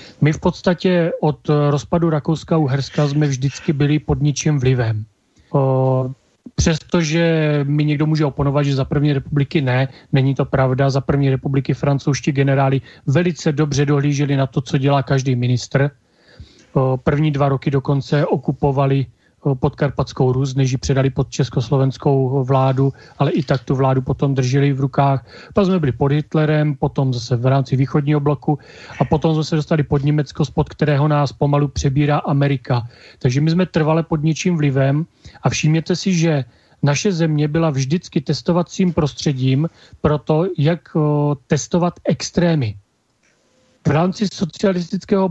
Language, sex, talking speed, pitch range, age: Czech, male, 150 wpm, 135-165 Hz, 30-49